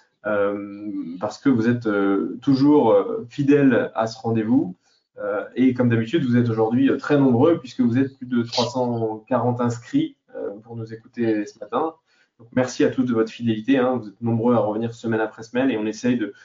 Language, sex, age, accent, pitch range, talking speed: French, male, 20-39, French, 115-135 Hz, 195 wpm